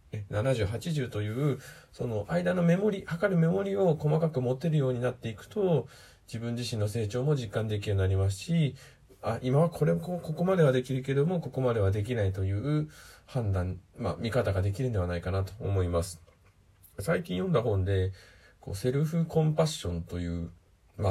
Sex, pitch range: male, 100-135 Hz